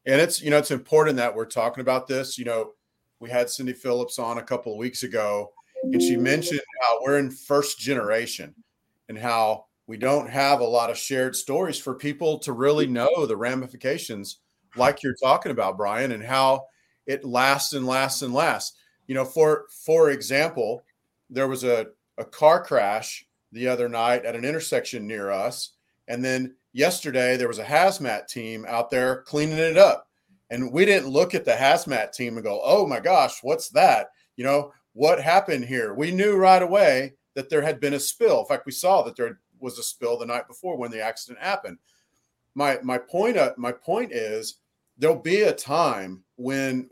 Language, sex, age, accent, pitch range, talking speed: English, male, 40-59, American, 120-150 Hz, 195 wpm